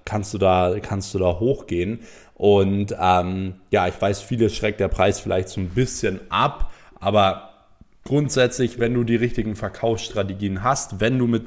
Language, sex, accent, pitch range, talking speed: German, male, German, 95-115 Hz, 165 wpm